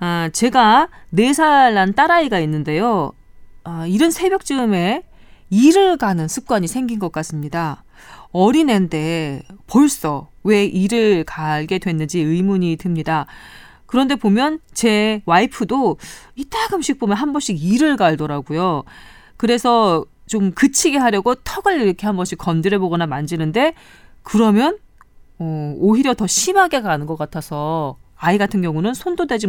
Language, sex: Korean, female